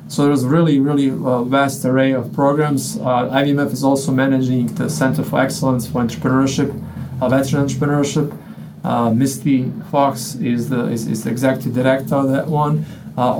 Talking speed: 170 wpm